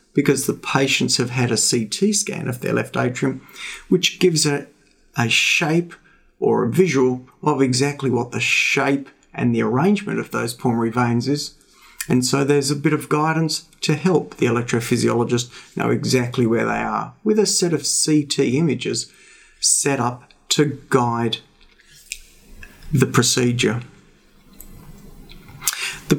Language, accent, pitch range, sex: English, Australian, 125-160 Hz, male